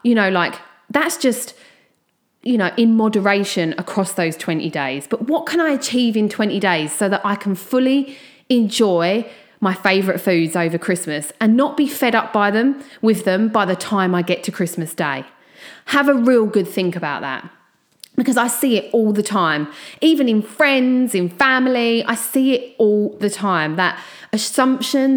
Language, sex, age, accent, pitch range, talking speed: English, female, 30-49, British, 185-255 Hz, 180 wpm